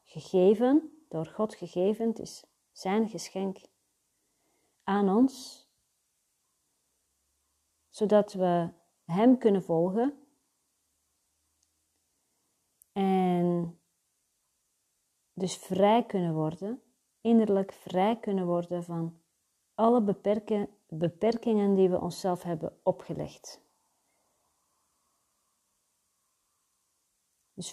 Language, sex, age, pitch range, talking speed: Dutch, female, 40-59, 170-210 Hz, 70 wpm